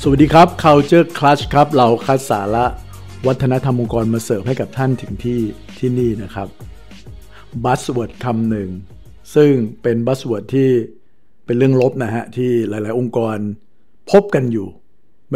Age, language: 60-79, Thai